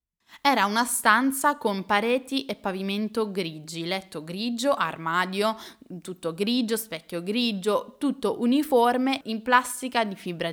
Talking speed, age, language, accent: 120 wpm, 10-29, Italian, native